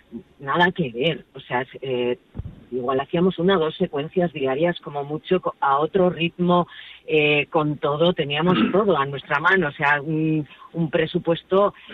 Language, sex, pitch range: Spanish, female, 155-195 Hz